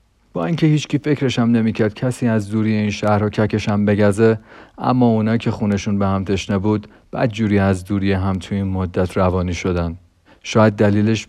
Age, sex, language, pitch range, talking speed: 40-59, male, Persian, 95-110 Hz, 170 wpm